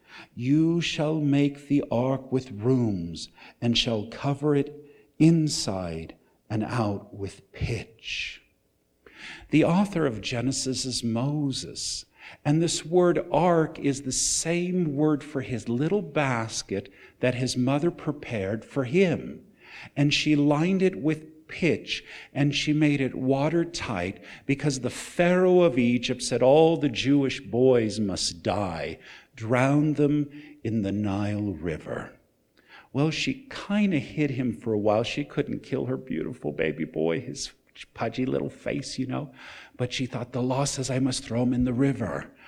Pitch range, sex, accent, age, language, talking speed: 115-150 Hz, male, American, 50-69, English, 145 wpm